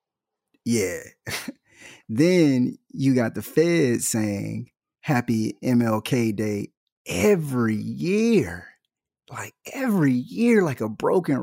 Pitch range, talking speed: 110-165 Hz, 95 wpm